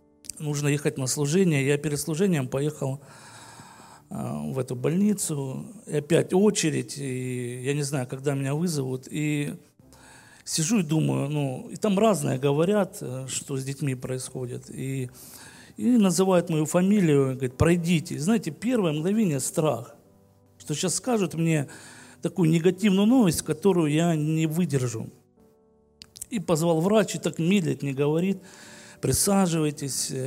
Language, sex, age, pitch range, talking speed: Russian, male, 40-59, 135-180 Hz, 125 wpm